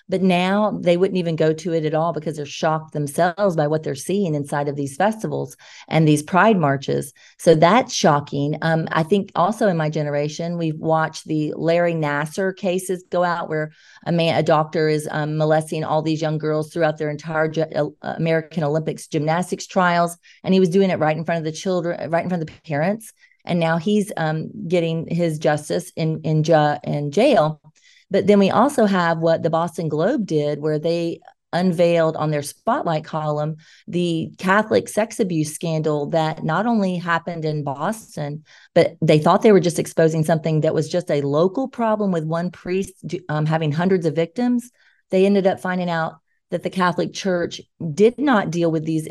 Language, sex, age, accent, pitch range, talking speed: English, female, 40-59, American, 155-190 Hz, 190 wpm